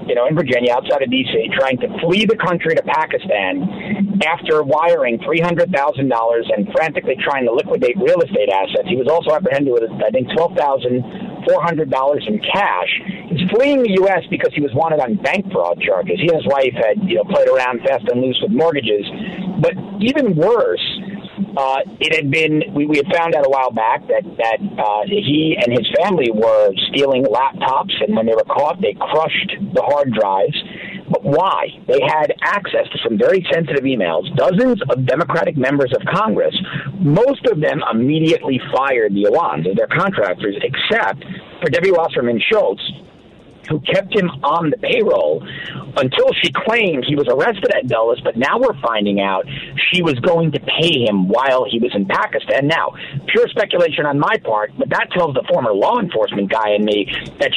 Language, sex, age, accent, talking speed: English, male, 50-69, American, 190 wpm